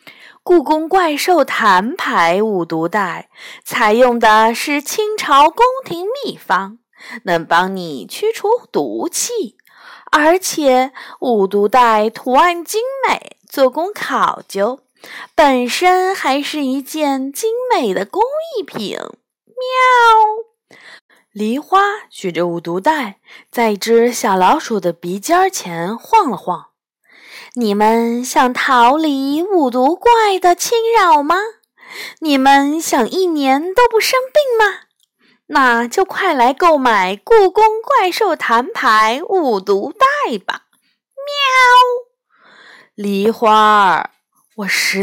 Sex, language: female, Chinese